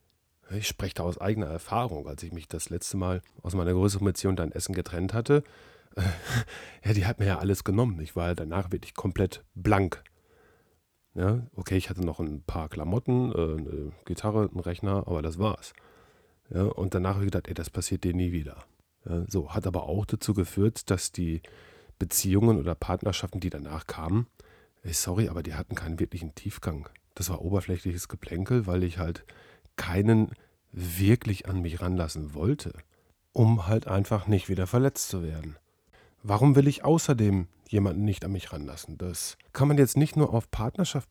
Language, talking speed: German, 170 wpm